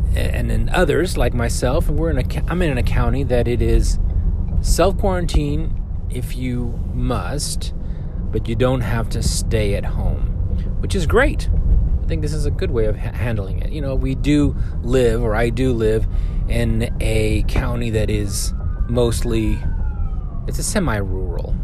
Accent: American